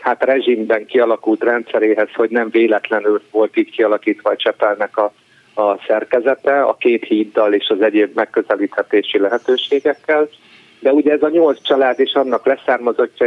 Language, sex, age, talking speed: Hungarian, male, 50-69, 145 wpm